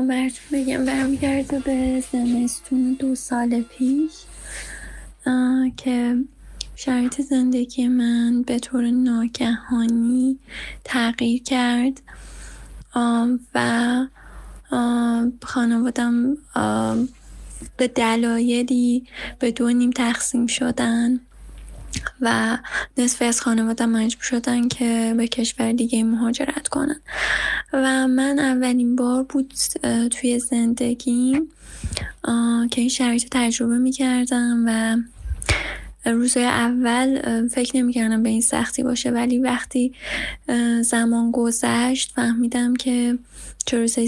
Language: Persian